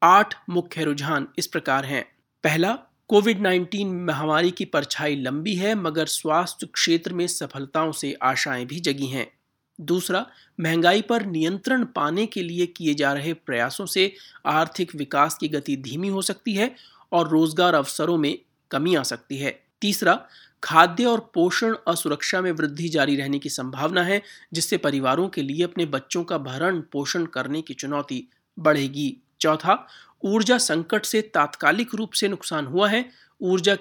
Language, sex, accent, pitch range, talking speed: Hindi, male, native, 150-190 Hz, 155 wpm